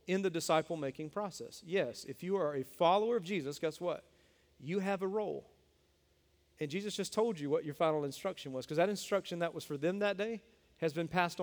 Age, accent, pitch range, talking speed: 40-59, American, 145-190 Hz, 215 wpm